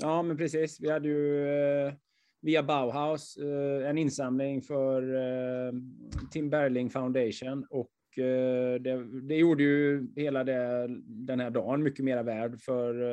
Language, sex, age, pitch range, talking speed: Swedish, male, 20-39, 125-140 Hz, 130 wpm